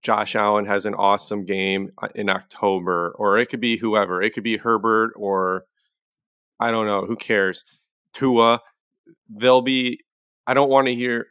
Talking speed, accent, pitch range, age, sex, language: 165 wpm, American, 100-125 Hz, 20-39, male, English